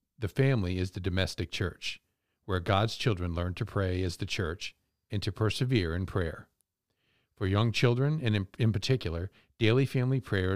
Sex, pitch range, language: male, 90-115 Hz, English